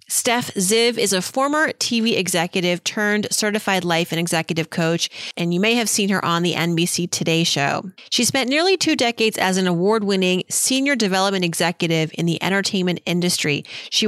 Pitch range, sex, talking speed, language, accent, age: 170-230 Hz, female, 170 wpm, English, American, 30-49